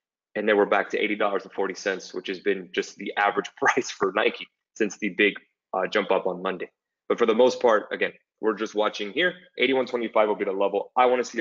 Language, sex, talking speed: English, male, 225 wpm